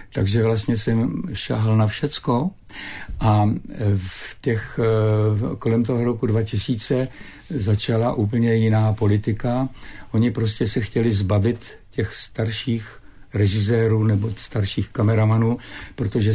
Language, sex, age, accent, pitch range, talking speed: Czech, male, 60-79, native, 105-115 Hz, 105 wpm